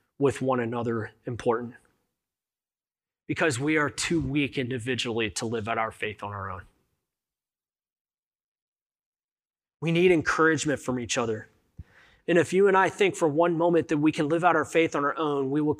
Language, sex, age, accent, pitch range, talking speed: English, male, 30-49, American, 125-160 Hz, 170 wpm